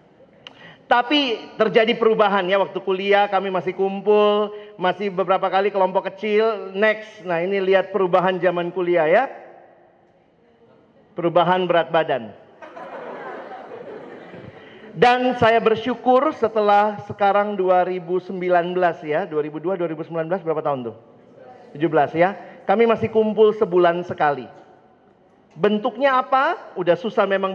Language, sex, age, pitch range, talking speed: Indonesian, male, 40-59, 175-215 Hz, 105 wpm